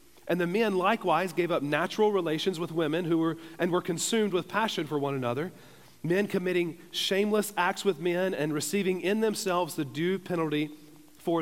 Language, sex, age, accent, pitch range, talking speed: English, male, 40-59, American, 155-190 Hz, 180 wpm